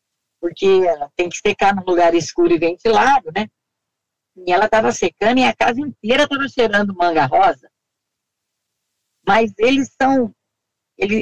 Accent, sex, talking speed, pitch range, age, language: Brazilian, female, 140 wpm, 185-265 Hz, 50-69, Portuguese